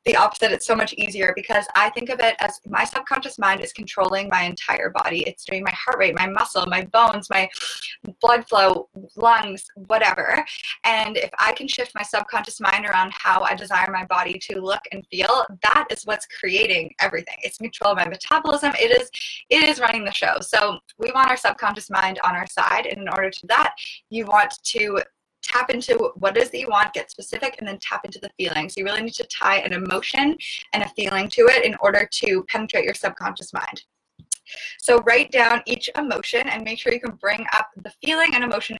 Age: 20-39